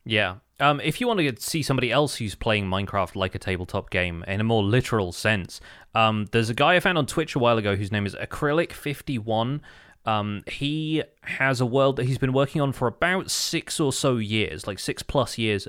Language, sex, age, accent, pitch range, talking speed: English, male, 20-39, British, 105-130 Hz, 220 wpm